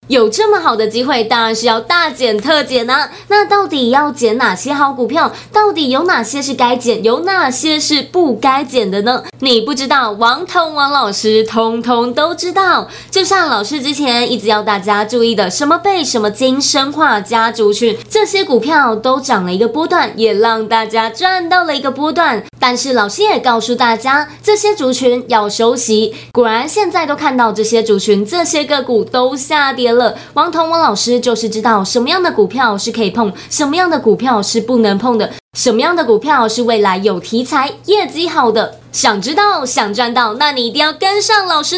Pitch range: 230-340 Hz